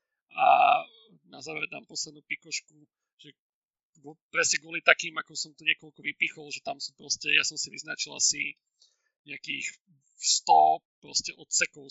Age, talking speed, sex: 40-59, 140 wpm, male